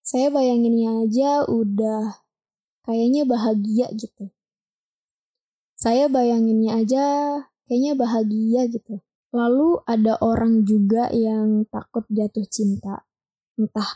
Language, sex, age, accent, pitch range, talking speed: Indonesian, female, 20-39, native, 220-240 Hz, 95 wpm